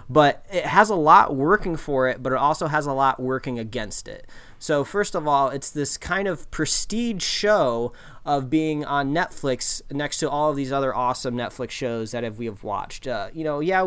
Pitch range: 120-150 Hz